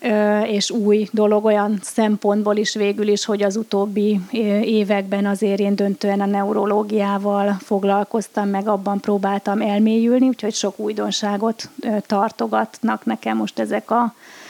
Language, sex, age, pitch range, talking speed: Hungarian, female, 30-49, 200-230 Hz, 120 wpm